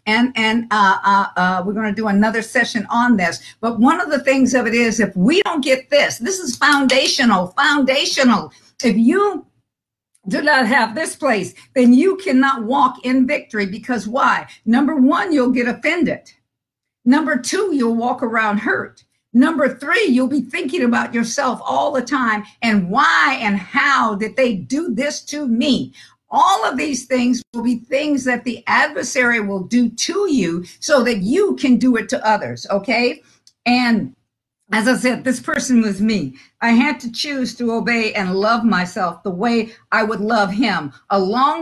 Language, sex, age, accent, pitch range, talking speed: English, female, 50-69, American, 215-270 Hz, 175 wpm